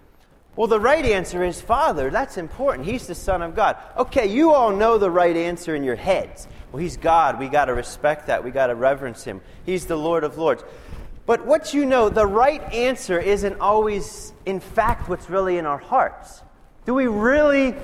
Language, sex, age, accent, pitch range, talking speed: English, male, 30-49, American, 190-245 Hz, 200 wpm